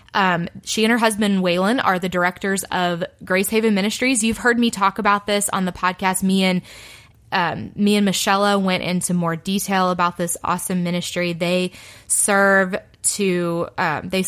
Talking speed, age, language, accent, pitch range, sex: 170 wpm, 20-39, English, American, 170-200 Hz, female